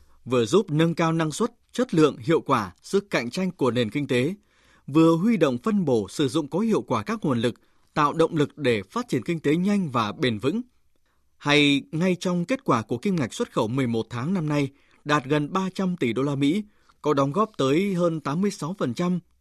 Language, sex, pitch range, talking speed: Vietnamese, male, 130-185 Hz, 215 wpm